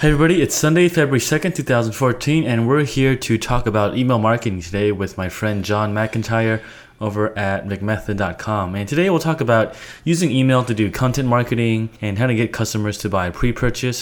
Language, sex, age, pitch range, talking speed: English, male, 20-39, 100-125 Hz, 185 wpm